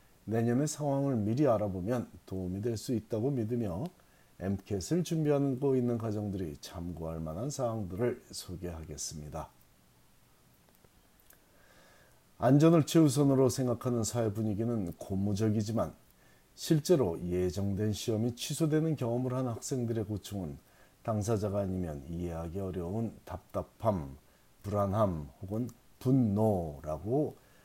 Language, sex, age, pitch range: Korean, male, 40-59, 95-130 Hz